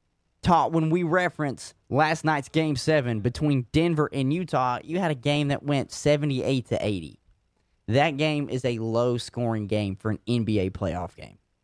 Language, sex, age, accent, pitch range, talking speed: English, male, 30-49, American, 115-165 Hz, 165 wpm